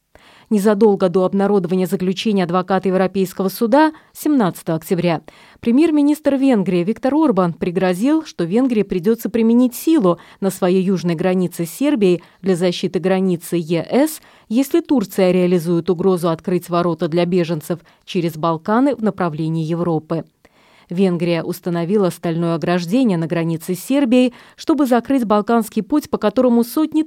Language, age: Russian, 20-39